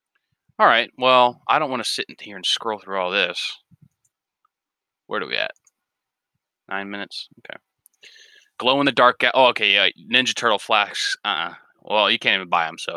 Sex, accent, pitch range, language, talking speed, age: male, American, 100-125 Hz, English, 190 wpm, 20-39